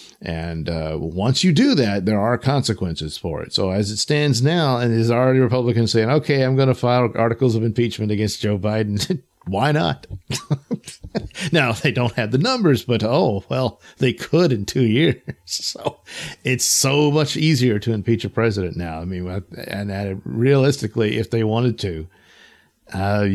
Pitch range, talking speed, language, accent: 100-130 Hz, 170 wpm, English, American